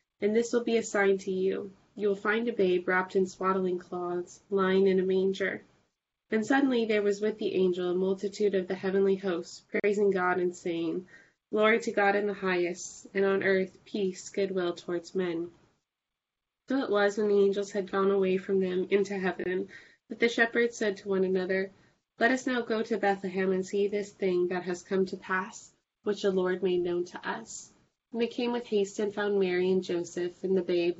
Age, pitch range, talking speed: 20-39, 180-205 Hz, 205 wpm